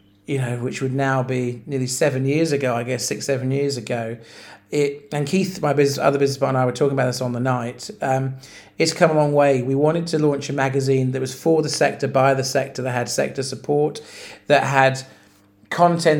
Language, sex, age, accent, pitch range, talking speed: English, male, 40-59, British, 130-150 Hz, 220 wpm